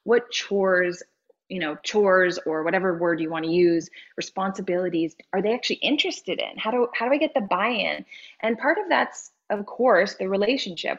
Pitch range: 170-220 Hz